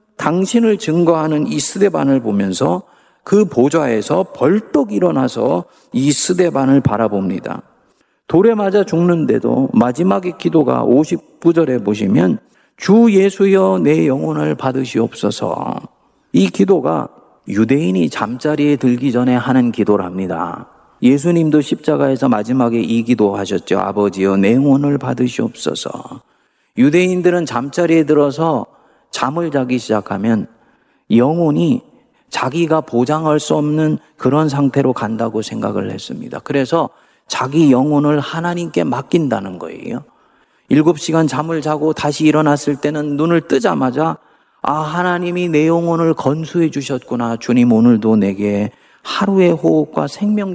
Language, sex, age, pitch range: Korean, male, 40-59, 125-170 Hz